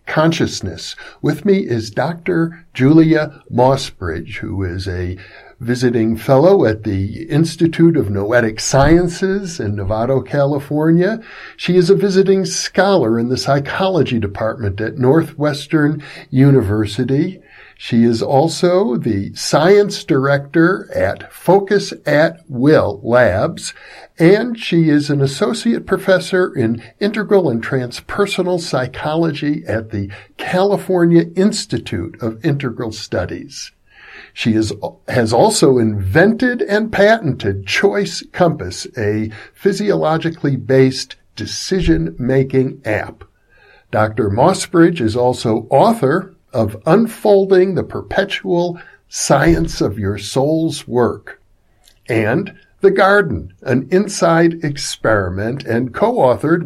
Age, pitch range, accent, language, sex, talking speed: 60-79, 115-180 Hz, American, English, male, 105 wpm